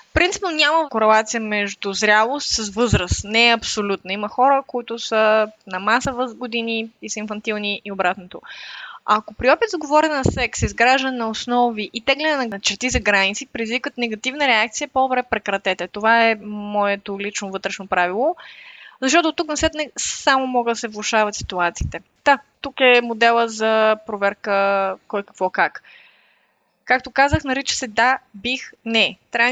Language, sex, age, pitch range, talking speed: Bulgarian, female, 20-39, 210-260 Hz, 160 wpm